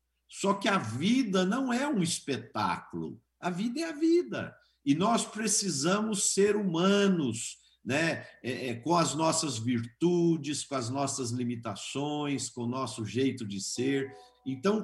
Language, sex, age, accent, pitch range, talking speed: Portuguese, male, 50-69, Brazilian, 120-170 Hz, 140 wpm